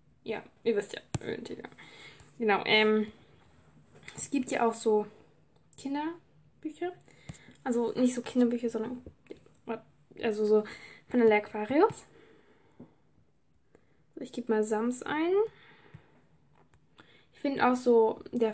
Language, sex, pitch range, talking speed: German, female, 220-255 Hz, 110 wpm